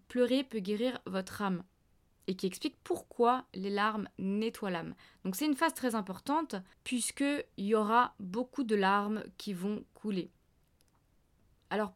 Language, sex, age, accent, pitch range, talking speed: French, female, 20-39, French, 180-250 Hz, 150 wpm